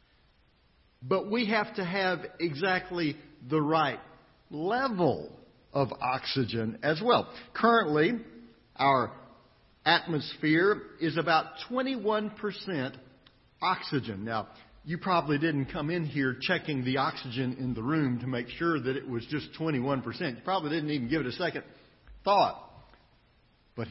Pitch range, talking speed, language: 130-195 Hz, 130 wpm, English